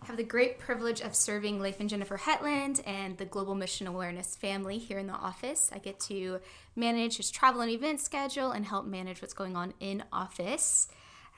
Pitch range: 195-235 Hz